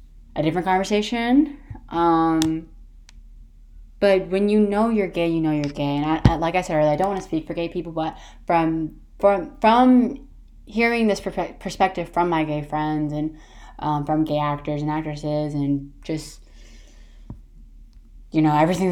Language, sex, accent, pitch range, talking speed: English, female, American, 155-205 Hz, 165 wpm